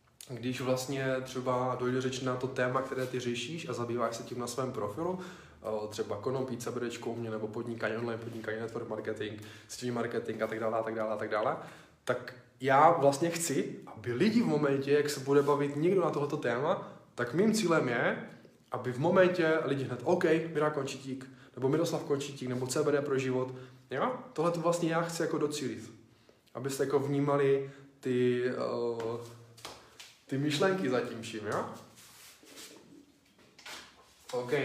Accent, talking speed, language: native, 160 wpm, Czech